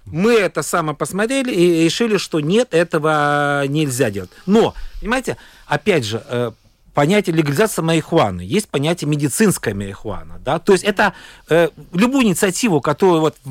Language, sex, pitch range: Russian, male, 125-185 Hz